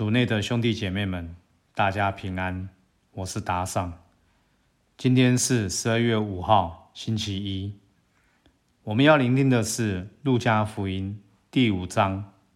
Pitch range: 95-120 Hz